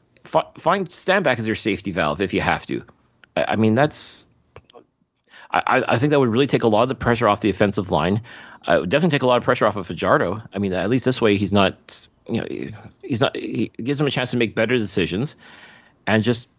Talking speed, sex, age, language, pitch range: 240 wpm, male, 30-49, English, 100-125 Hz